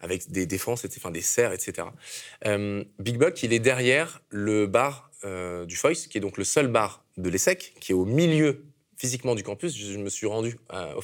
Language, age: French, 20-39